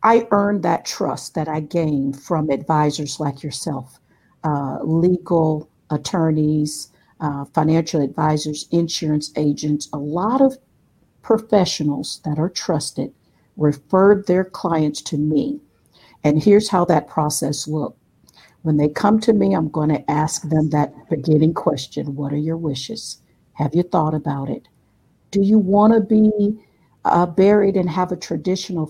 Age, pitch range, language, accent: 50-69, 150-210 Hz, English, American